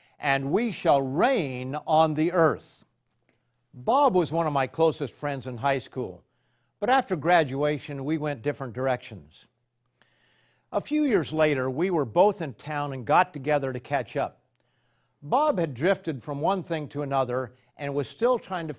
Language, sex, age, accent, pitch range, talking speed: English, male, 50-69, American, 130-170 Hz, 165 wpm